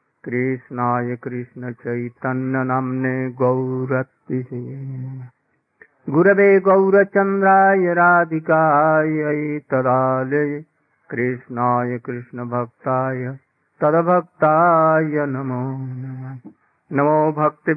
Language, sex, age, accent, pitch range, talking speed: English, male, 50-69, Indian, 130-155 Hz, 55 wpm